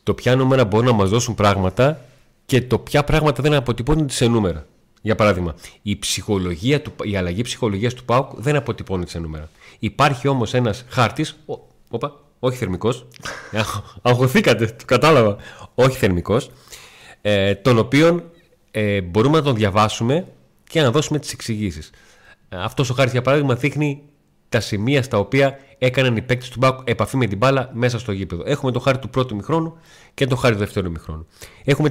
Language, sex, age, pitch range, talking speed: Greek, male, 30-49, 105-145 Hz, 170 wpm